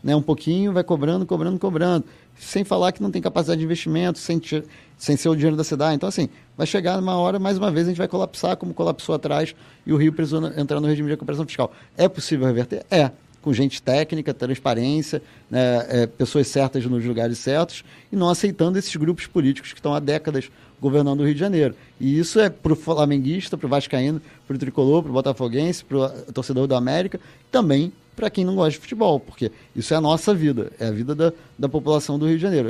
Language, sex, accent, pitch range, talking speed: Portuguese, male, Brazilian, 135-175 Hz, 225 wpm